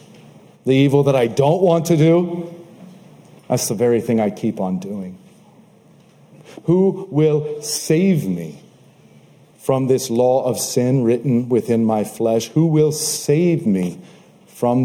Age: 50-69